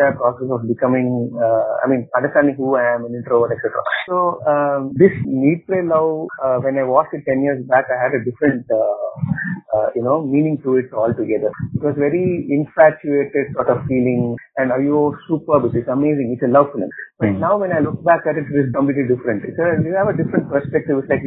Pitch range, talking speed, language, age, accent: 130-170 Hz, 215 wpm, English, 30-49, Indian